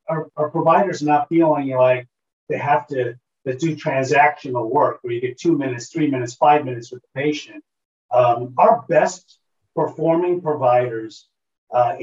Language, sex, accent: English, male, American